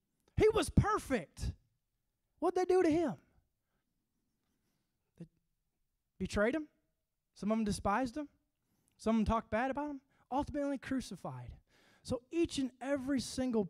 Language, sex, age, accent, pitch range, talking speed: English, male, 20-39, American, 175-290 Hz, 130 wpm